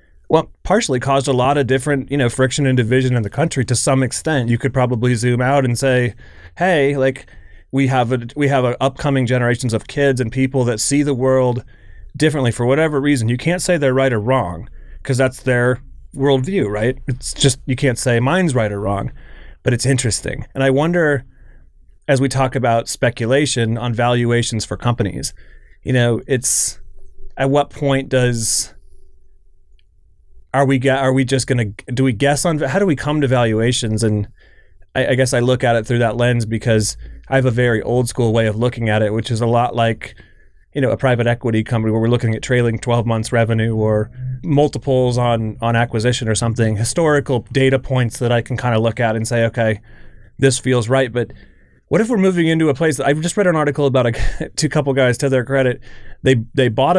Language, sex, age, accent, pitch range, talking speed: English, male, 30-49, American, 115-135 Hz, 205 wpm